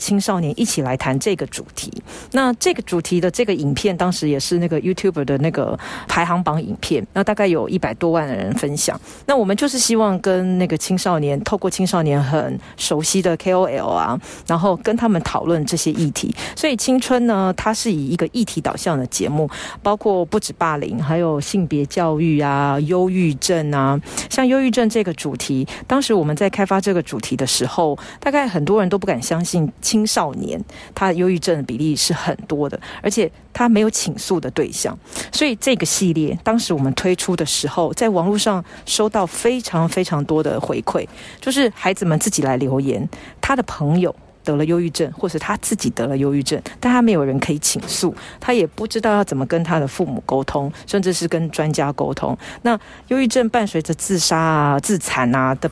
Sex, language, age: female, Chinese, 40-59